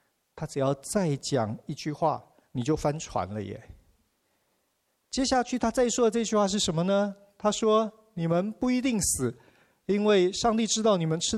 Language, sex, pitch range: Chinese, male, 125-185 Hz